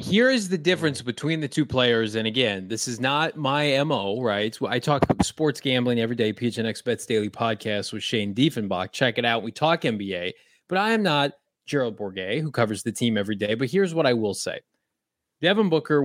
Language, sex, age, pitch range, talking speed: English, male, 20-39, 115-150 Hz, 205 wpm